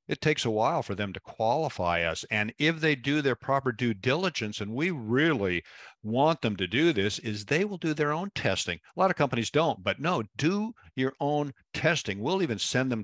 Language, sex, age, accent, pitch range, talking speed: English, male, 50-69, American, 90-125 Hz, 215 wpm